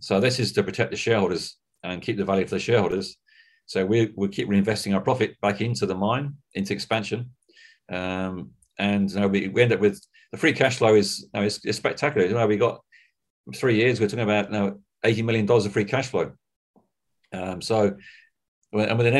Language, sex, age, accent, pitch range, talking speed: English, male, 40-59, British, 95-115 Hz, 190 wpm